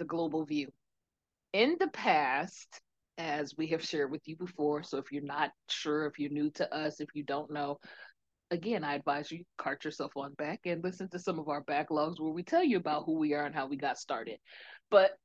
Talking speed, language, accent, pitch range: 215 wpm, English, American, 160-220 Hz